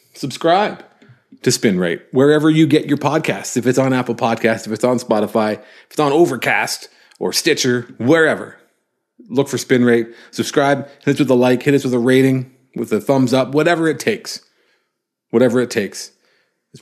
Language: English